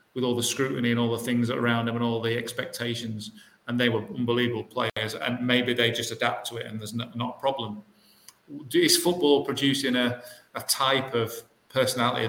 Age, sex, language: 40-59, male, English